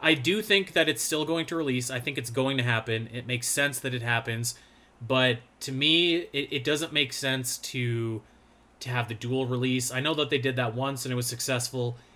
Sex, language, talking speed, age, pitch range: male, English, 225 wpm, 30-49, 125-150 Hz